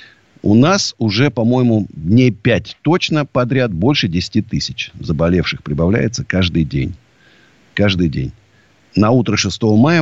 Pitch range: 85-125 Hz